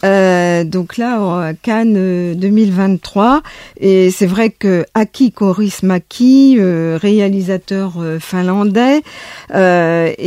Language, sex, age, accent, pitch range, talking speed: French, female, 50-69, French, 190-240 Hz, 90 wpm